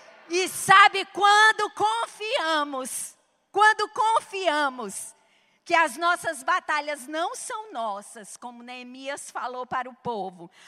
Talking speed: 105 wpm